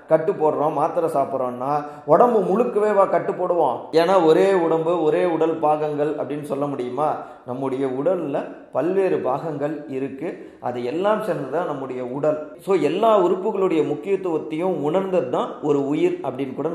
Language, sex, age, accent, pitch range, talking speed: Tamil, male, 30-49, native, 135-170 Hz, 110 wpm